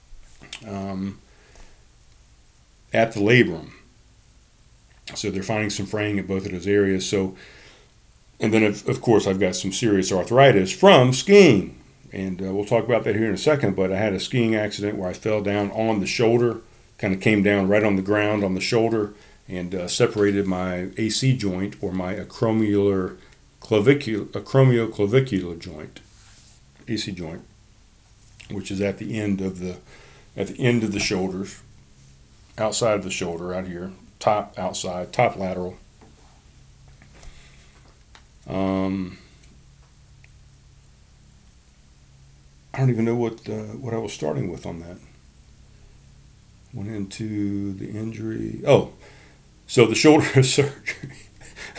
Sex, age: male, 40-59